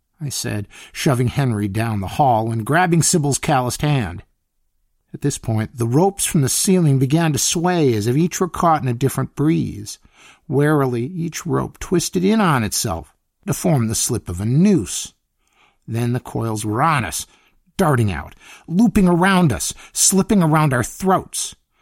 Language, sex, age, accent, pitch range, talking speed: English, male, 50-69, American, 110-160 Hz, 170 wpm